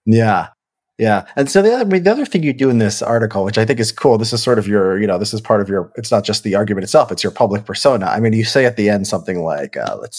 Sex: male